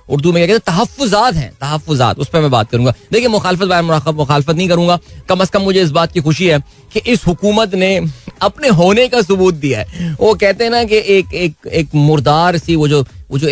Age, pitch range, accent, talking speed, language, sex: 30-49, 140-195 Hz, native, 60 wpm, Hindi, male